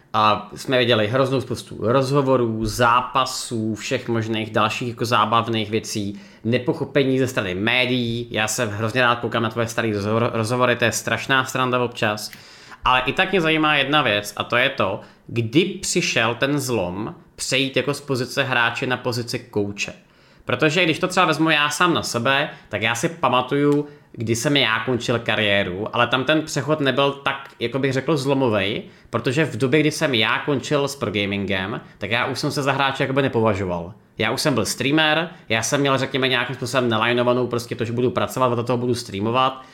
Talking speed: 180 wpm